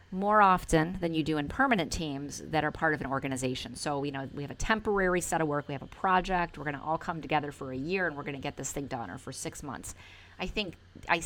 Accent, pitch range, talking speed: American, 130-160 Hz, 275 wpm